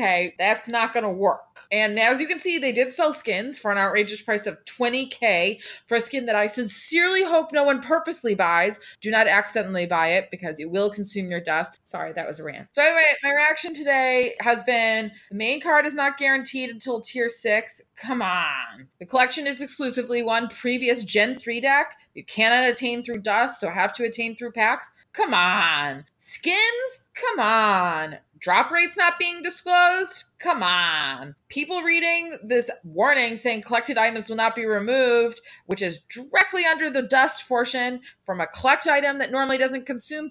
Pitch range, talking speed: 215-310 Hz, 180 wpm